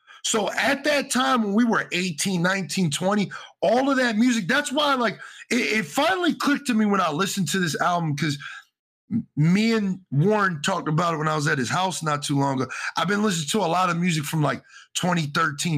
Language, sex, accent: English, male, American